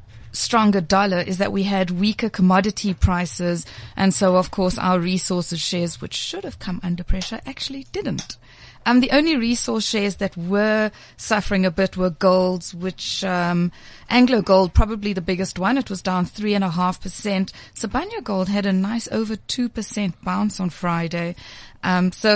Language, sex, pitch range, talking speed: English, female, 185-225 Hz, 175 wpm